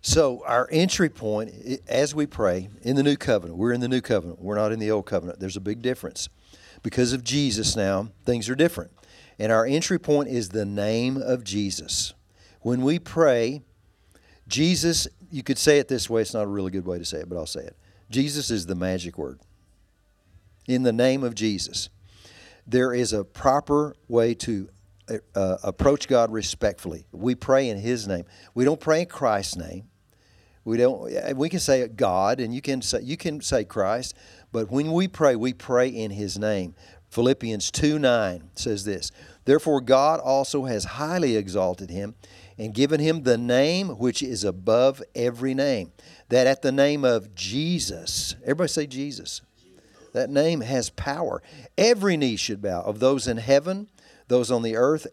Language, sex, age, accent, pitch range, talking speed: English, male, 50-69, American, 100-135 Hz, 180 wpm